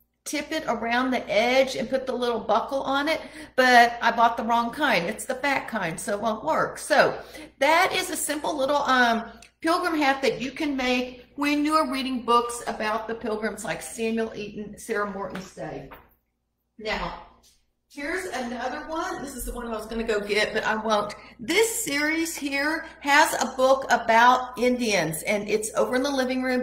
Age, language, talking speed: 50-69, English, 190 wpm